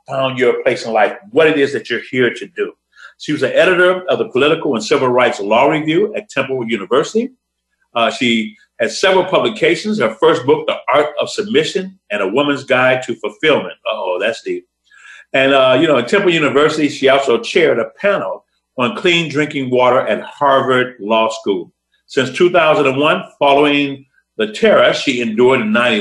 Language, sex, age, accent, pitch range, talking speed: English, male, 50-69, American, 110-180 Hz, 180 wpm